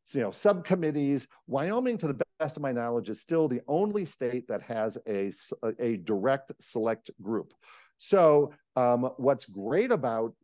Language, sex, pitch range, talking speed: English, male, 115-155 Hz, 155 wpm